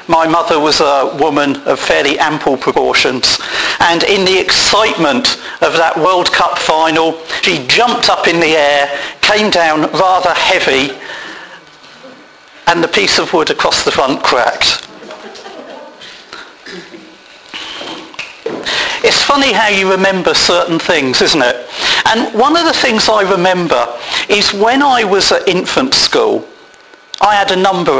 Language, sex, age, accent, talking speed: English, male, 50-69, British, 135 wpm